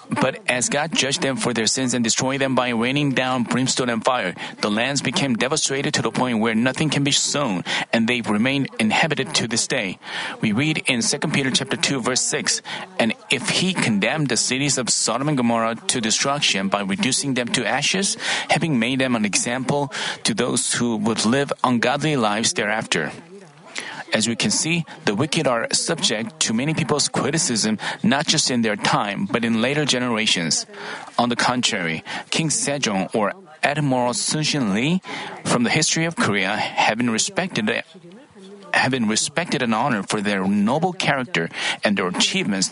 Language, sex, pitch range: Korean, male, 125-165 Hz